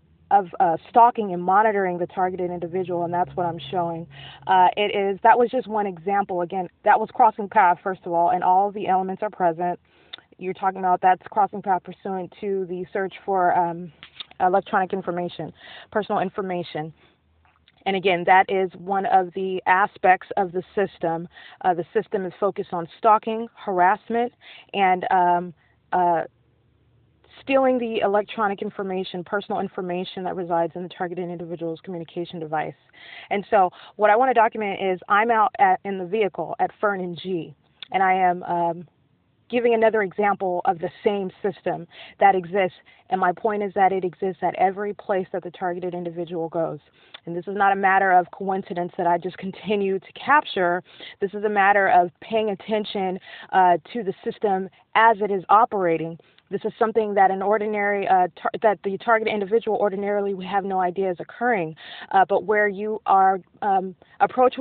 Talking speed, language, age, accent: 175 wpm, English, 20-39, American